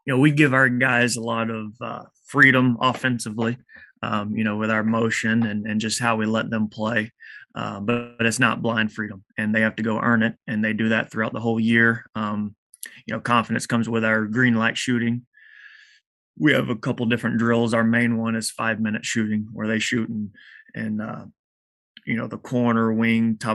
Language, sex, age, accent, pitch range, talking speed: English, male, 20-39, American, 110-115 Hz, 210 wpm